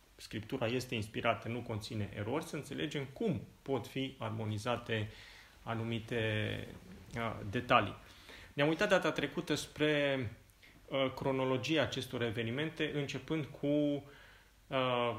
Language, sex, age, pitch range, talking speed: Romanian, male, 30-49, 110-145 Hz, 105 wpm